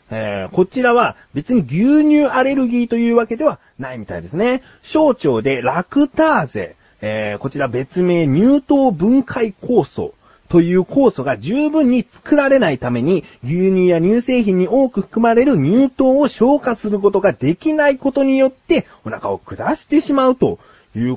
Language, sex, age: Japanese, male, 40-59